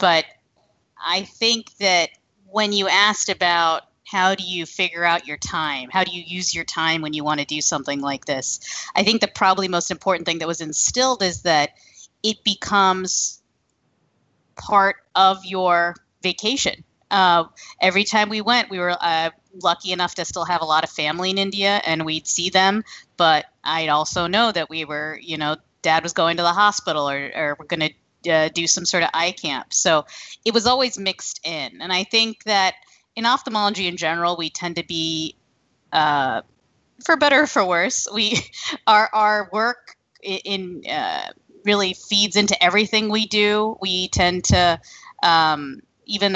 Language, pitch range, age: English, 165-200 Hz, 30-49